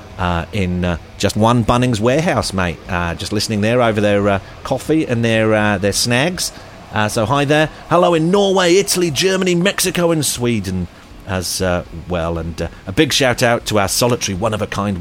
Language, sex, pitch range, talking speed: English, male, 90-125 Hz, 185 wpm